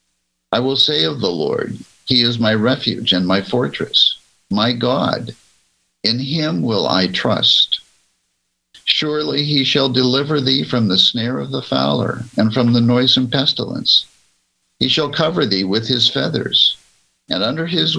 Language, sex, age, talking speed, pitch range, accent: English, male, 60-79, 155 wpm, 100-130 Hz, American